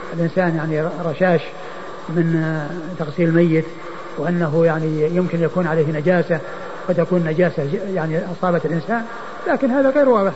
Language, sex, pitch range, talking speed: Arabic, male, 165-210 Hz, 125 wpm